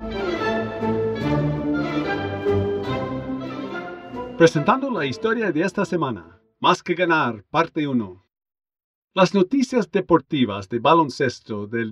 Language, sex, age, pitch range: English, male, 50-69, 130-175 Hz